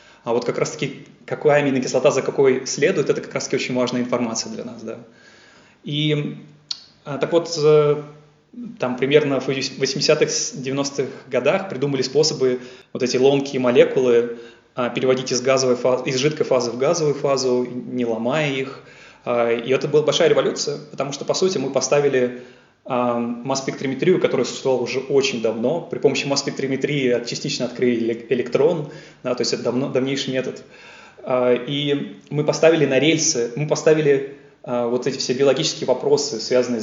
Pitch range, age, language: 125-145 Hz, 20-39, Russian